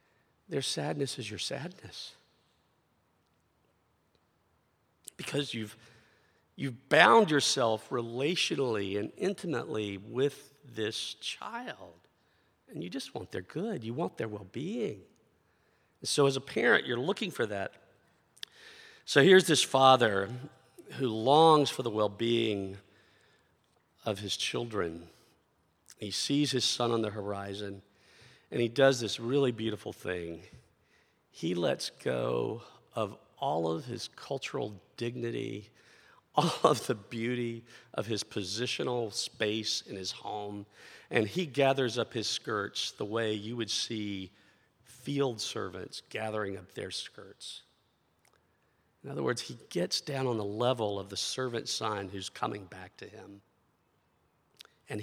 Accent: American